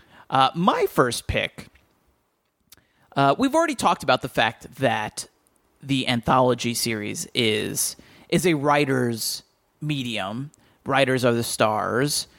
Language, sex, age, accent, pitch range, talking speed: English, male, 30-49, American, 120-155 Hz, 115 wpm